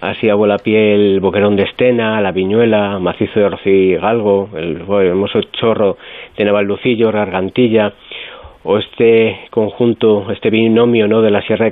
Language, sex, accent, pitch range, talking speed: Spanish, male, Spanish, 105-120 Hz, 160 wpm